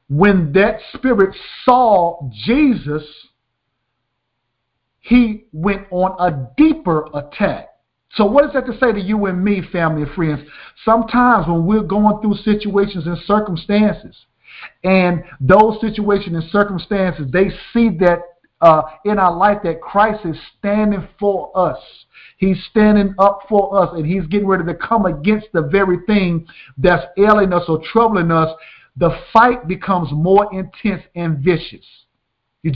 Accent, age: American, 50-69